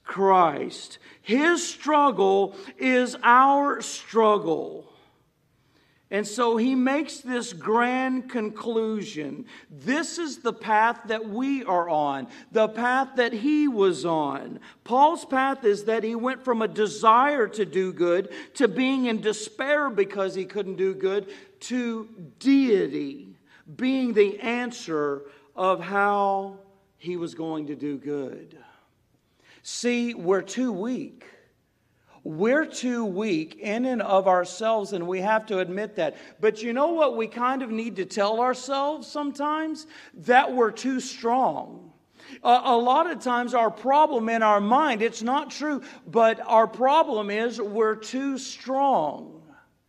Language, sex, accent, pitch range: English, male, American, 195-255 Hz